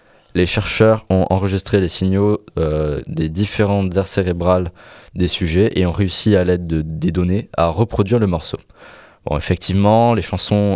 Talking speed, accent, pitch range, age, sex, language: 165 wpm, French, 90-105 Hz, 20-39, male, French